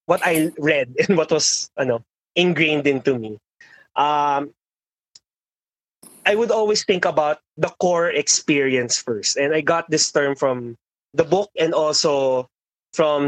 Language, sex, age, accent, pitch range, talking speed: English, male, 20-39, Filipino, 135-180 Hz, 140 wpm